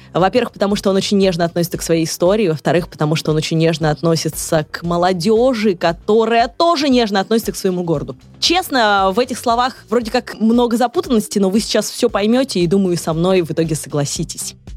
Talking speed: 185 wpm